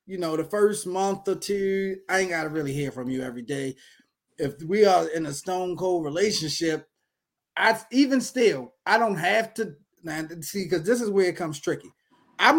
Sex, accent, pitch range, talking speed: male, American, 155-200 Hz, 200 wpm